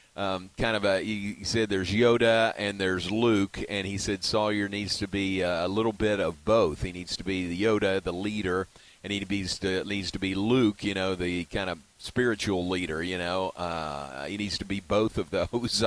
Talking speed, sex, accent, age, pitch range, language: 210 wpm, male, American, 40-59, 95-120 Hz, English